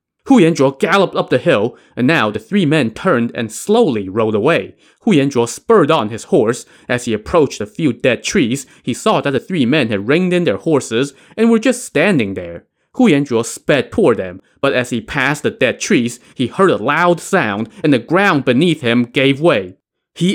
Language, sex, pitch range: English, male, 105-150 Hz